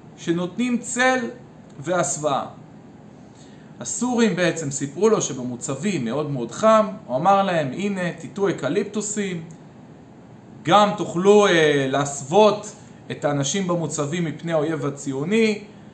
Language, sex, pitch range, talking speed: Hebrew, male, 140-205 Hz, 100 wpm